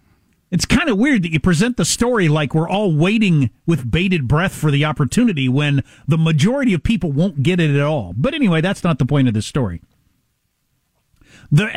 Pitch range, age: 140-205 Hz, 40-59